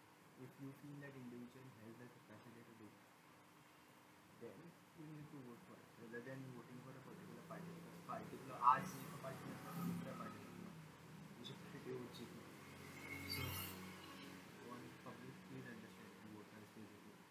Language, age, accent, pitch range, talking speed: Marathi, 20-39, native, 120-140 Hz, 105 wpm